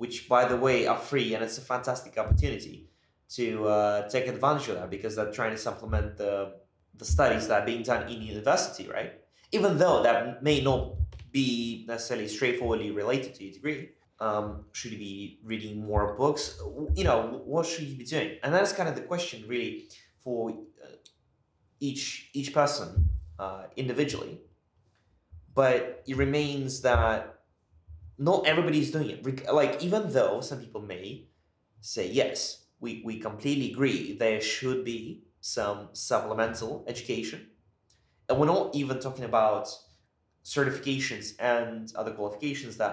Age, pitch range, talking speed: 20-39, 105-135 Hz, 150 wpm